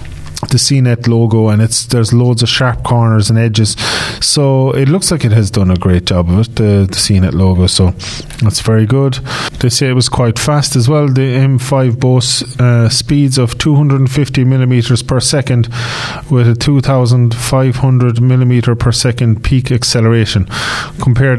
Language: English